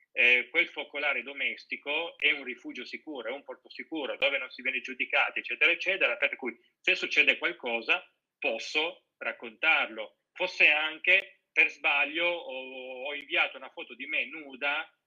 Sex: male